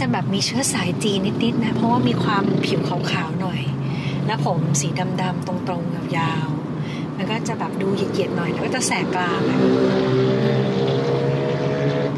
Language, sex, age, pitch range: Thai, female, 30-49, 140-195 Hz